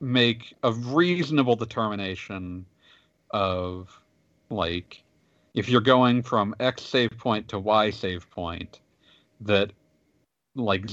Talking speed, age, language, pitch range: 105 wpm, 40-59, English, 90-110 Hz